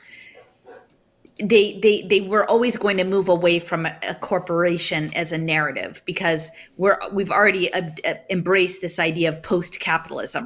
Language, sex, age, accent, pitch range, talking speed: English, female, 30-49, American, 165-200 Hz, 140 wpm